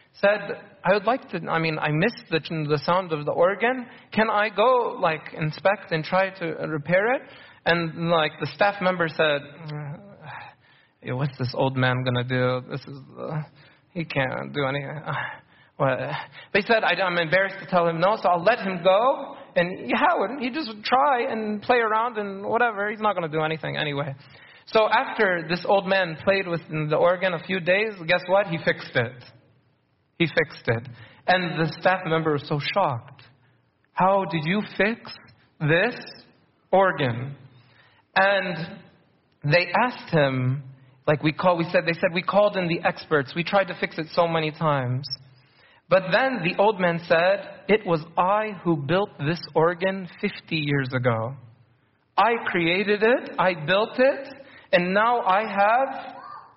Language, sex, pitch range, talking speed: English, male, 145-200 Hz, 175 wpm